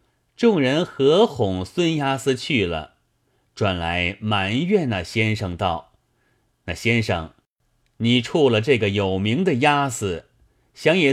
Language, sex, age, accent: Chinese, male, 30-49, native